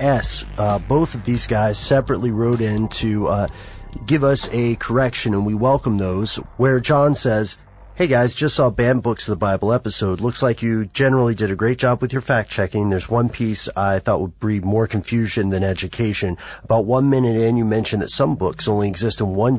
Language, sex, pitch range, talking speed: English, male, 100-120 Hz, 205 wpm